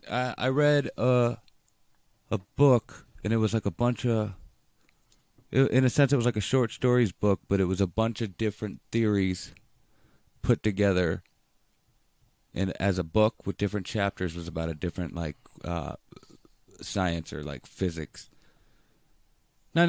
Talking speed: 150 wpm